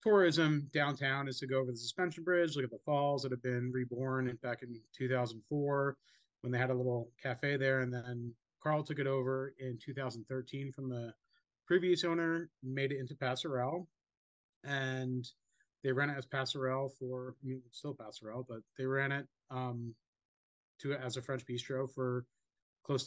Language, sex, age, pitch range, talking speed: English, male, 30-49, 125-140 Hz, 170 wpm